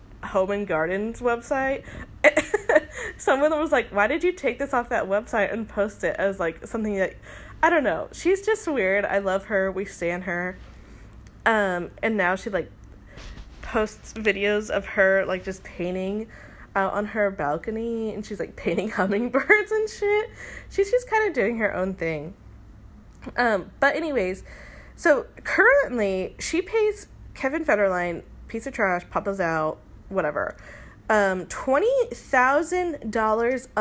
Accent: American